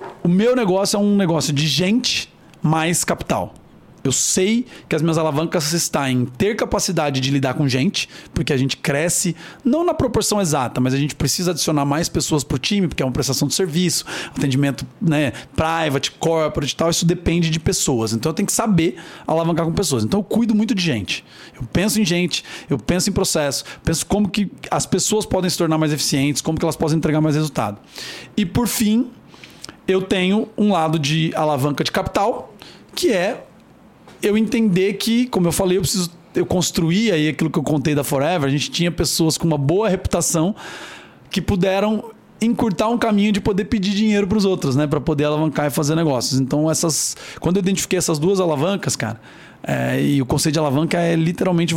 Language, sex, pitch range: Portuguese, male, 150-195 Hz